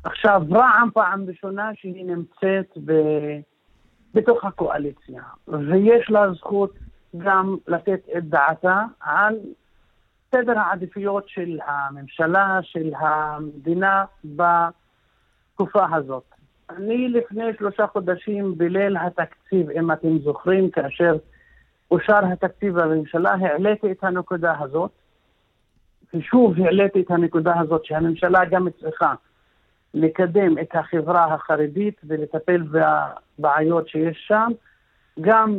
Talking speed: 100 wpm